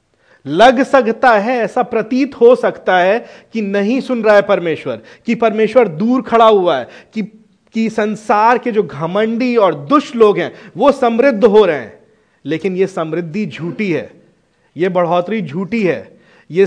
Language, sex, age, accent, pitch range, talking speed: Hindi, male, 30-49, native, 150-220 Hz, 160 wpm